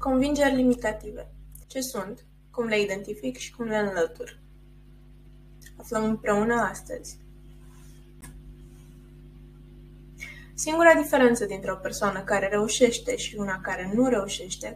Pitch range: 200-255 Hz